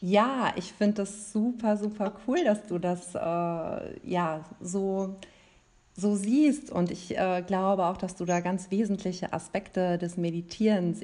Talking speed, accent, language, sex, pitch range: 150 wpm, German, German, female, 180-225 Hz